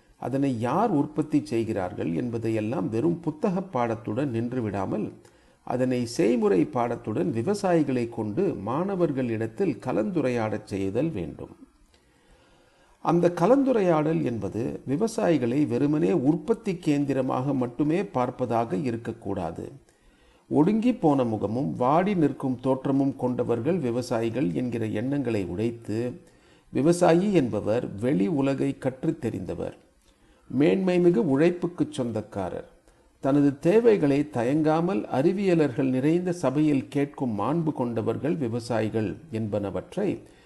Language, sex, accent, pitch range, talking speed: Tamil, male, native, 115-160 Hz, 90 wpm